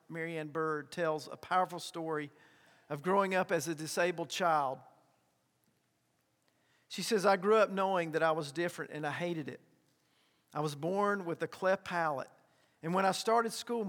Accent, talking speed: American, 170 wpm